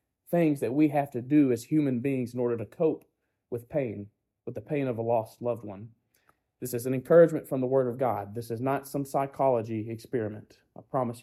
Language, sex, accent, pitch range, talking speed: English, male, American, 120-160 Hz, 215 wpm